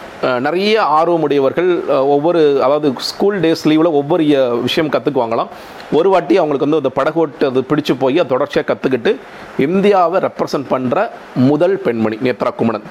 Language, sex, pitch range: Tamil, male, 140-180 Hz